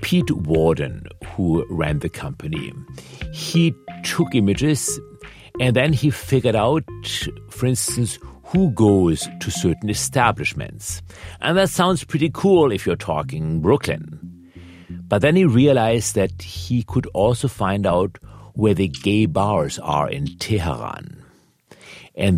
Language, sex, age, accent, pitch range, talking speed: English, male, 60-79, German, 85-125 Hz, 130 wpm